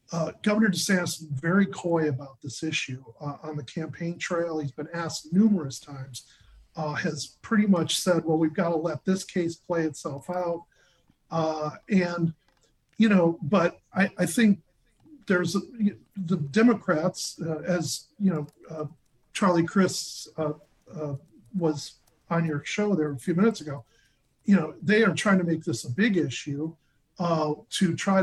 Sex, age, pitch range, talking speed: male, 40-59, 150-185 Hz, 165 wpm